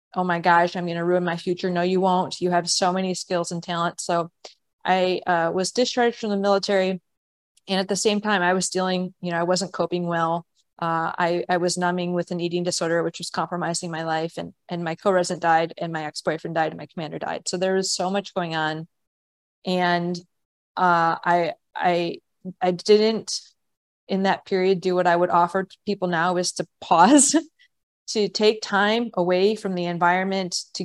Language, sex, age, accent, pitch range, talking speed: English, female, 20-39, American, 170-185 Hz, 200 wpm